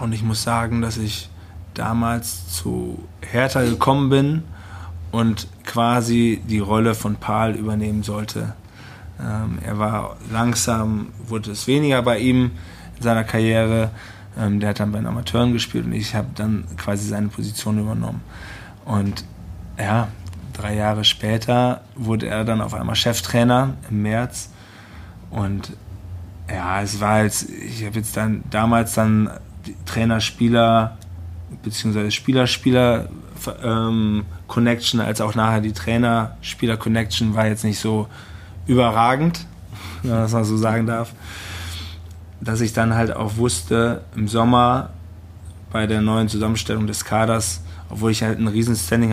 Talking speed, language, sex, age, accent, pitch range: 135 wpm, German, male, 20-39, German, 95-115 Hz